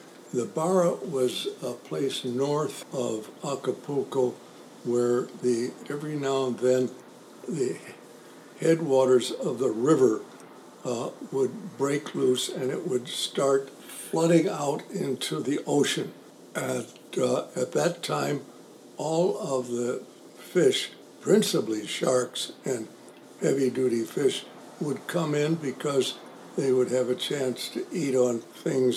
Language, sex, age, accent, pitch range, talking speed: English, male, 60-79, American, 120-145 Hz, 120 wpm